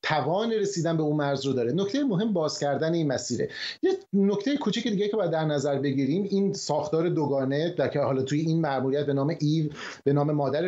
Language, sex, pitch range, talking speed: Persian, male, 140-175 Hz, 200 wpm